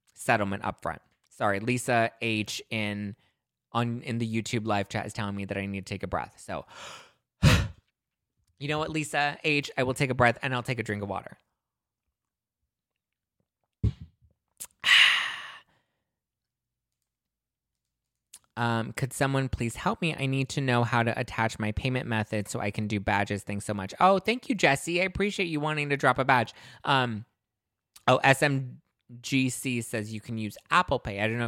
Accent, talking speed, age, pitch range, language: American, 170 wpm, 20-39, 115-145 Hz, English